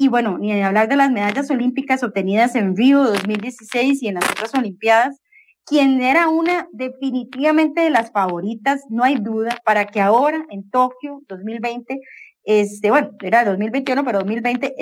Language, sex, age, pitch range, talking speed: English, female, 30-49, 220-275 Hz, 160 wpm